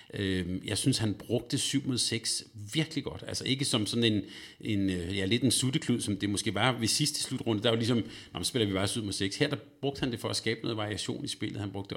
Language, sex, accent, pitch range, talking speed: Danish, male, native, 100-125 Hz, 255 wpm